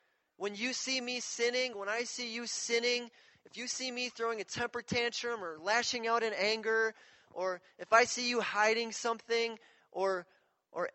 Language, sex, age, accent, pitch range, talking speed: English, male, 30-49, American, 225-270 Hz, 175 wpm